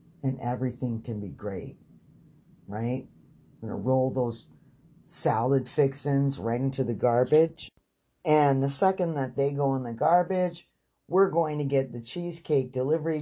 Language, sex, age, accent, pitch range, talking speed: English, male, 50-69, American, 115-150 Hz, 150 wpm